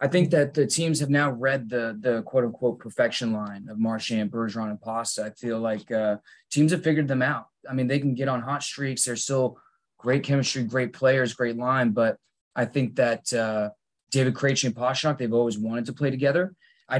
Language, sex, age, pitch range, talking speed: English, male, 20-39, 115-135 Hz, 210 wpm